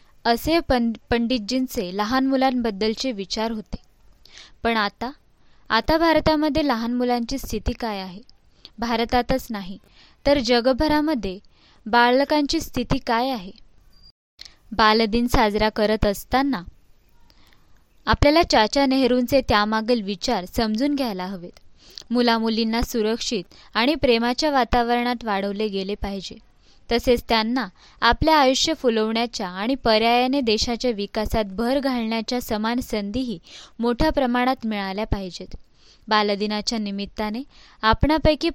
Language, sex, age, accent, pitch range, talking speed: Marathi, female, 20-39, native, 215-255 Hz, 100 wpm